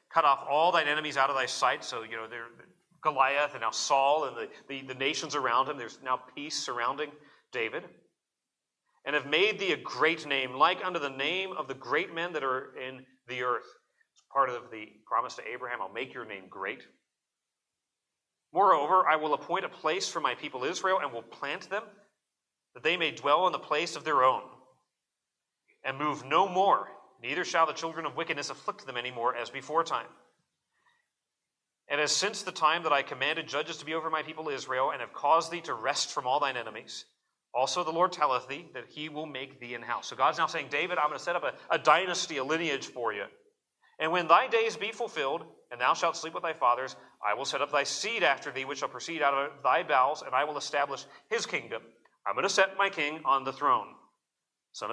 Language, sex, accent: English, male, American